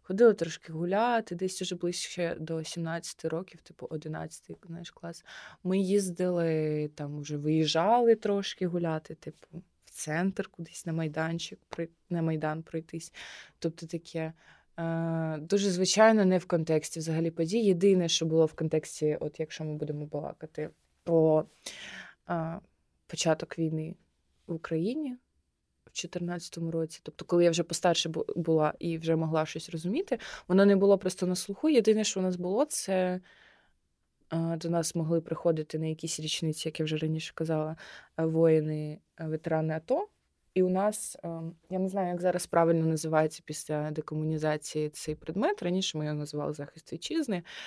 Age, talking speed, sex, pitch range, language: 20-39, 145 wpm, female, 155-180 Hz, Ukrainian